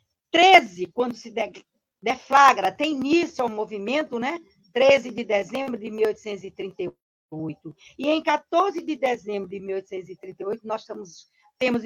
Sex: female